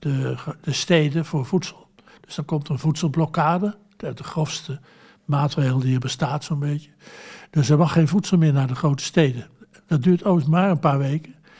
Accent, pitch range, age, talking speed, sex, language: Dutch, 145-180 Hz, 60-79, 190 wpm, male, Dutch